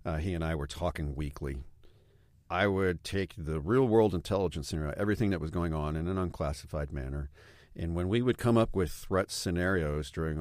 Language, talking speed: English, 190 wpm